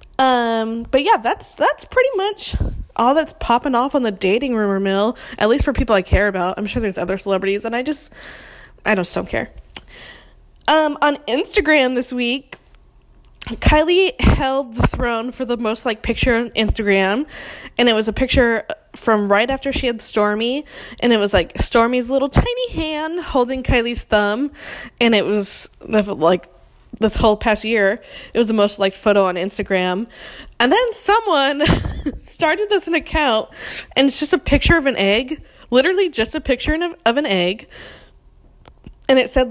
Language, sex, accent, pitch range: English, female, American, 210-280 Hz